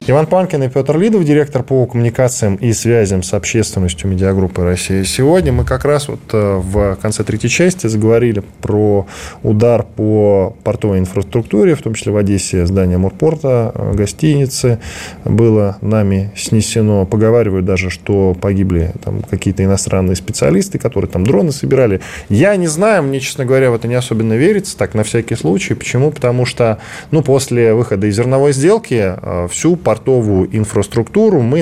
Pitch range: 95-130 Hz